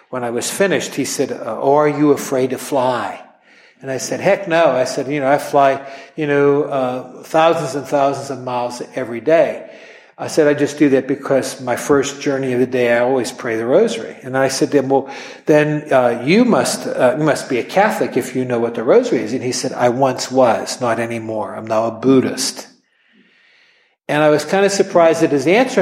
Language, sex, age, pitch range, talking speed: English, male, 60-79, 130-170 Hz, 220 wpm